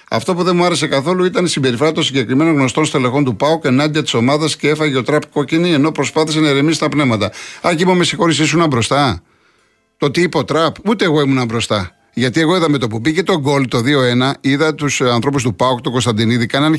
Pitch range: 125-160 Hz